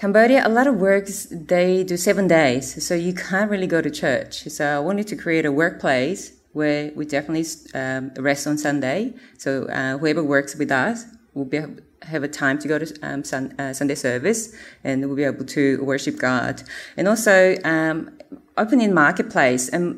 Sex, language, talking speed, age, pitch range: female, English, 180 wpm, 30-49, 145-195 Hz